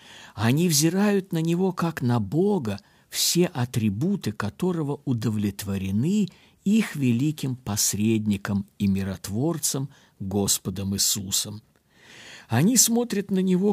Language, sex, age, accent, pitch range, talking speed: Russian, male, 50-69, native, 105-170 Hz, 95 wpm